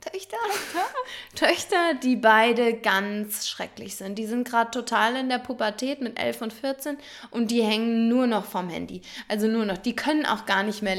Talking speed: 185 wpm